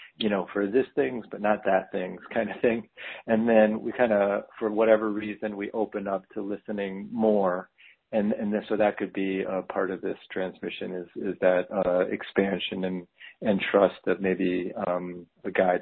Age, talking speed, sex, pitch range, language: 40-59, 195 wpm, male, 95-110 Hz, English